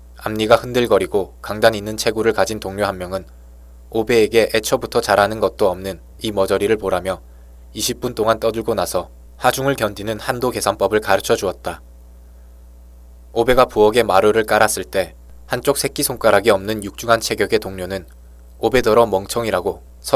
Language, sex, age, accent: Korean, male, 20-39, native